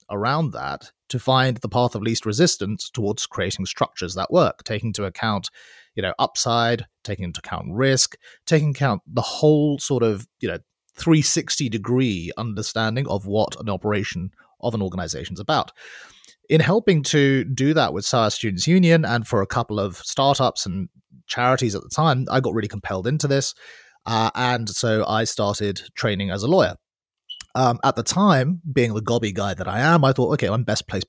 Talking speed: 190 wpm